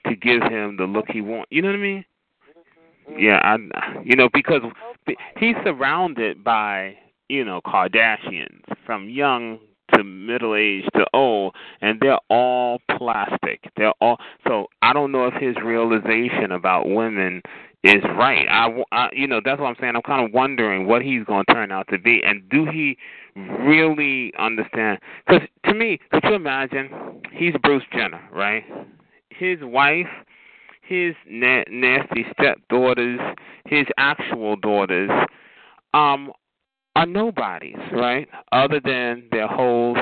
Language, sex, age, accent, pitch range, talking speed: English, male, 30-49, American, 110-145 Hz, 150 wpm